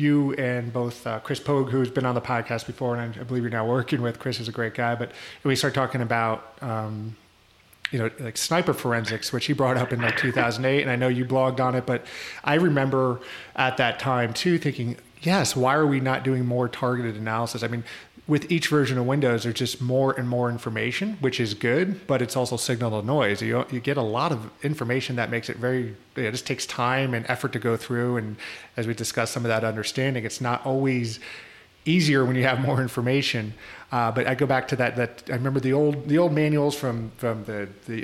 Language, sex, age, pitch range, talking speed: English, male, 30-49, 120-135 Hz, 225 wpm